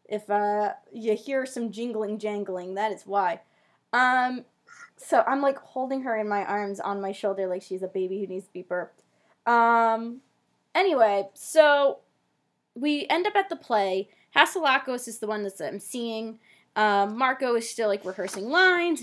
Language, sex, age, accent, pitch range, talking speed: English, female, 10-29, American, 200-260 Hz, 170 wpm